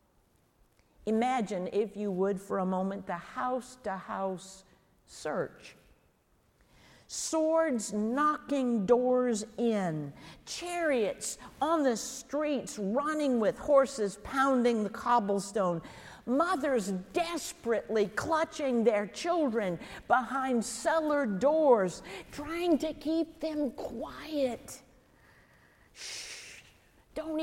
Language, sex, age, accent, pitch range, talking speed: English, female, 50-69, American, 215-300 Hz, 85 wpm